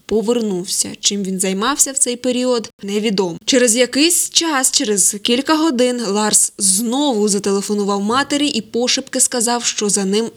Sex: female